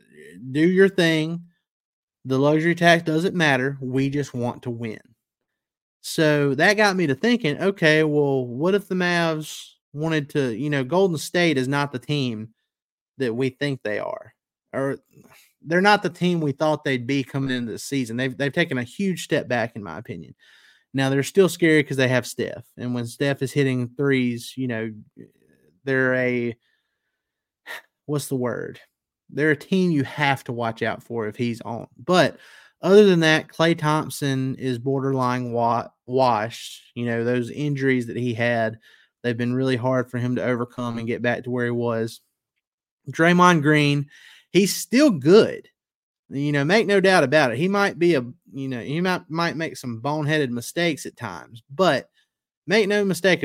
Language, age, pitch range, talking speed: English, 30-49, 125-170 Hz, 180 wpm